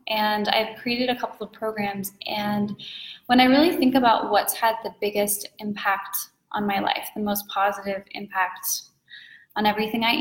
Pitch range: 200-230 Hz